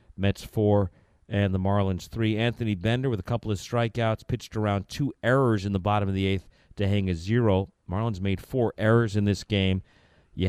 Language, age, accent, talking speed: English, 50-69, American, 200 wpm